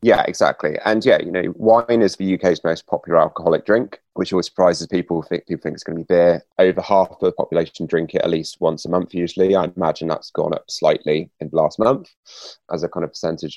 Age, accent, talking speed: 20-39, British, 240 wpm